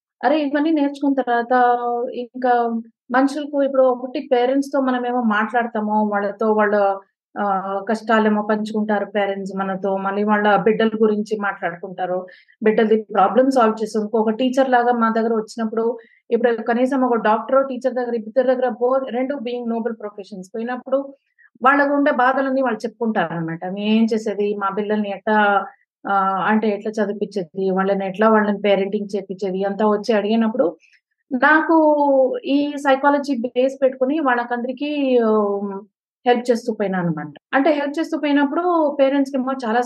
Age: 20-39